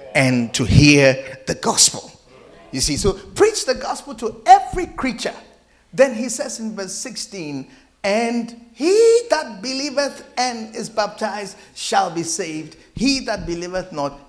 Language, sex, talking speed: English, male, 145 wpm